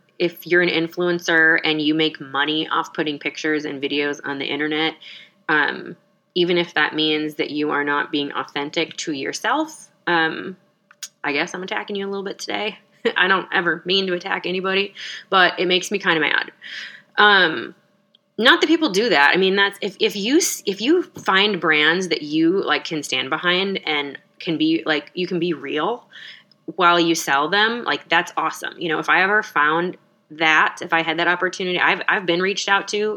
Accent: American